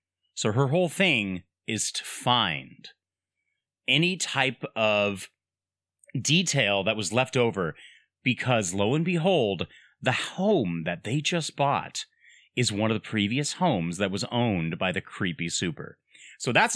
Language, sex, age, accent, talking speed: English, male, 30-49, American, 145 wpm